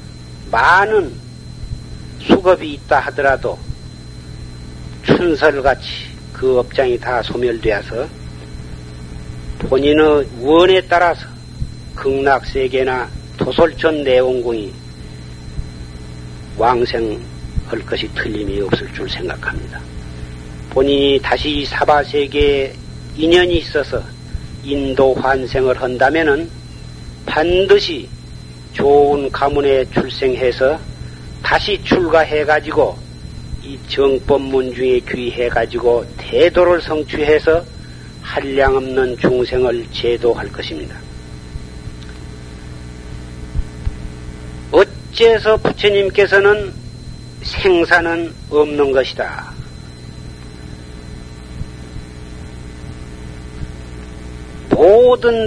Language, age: Korean, 40-59